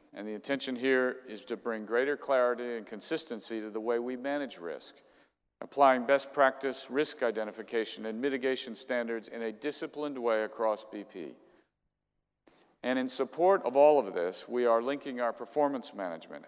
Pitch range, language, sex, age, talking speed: 110-135 Hz, English, male, 50-69, 160 wpm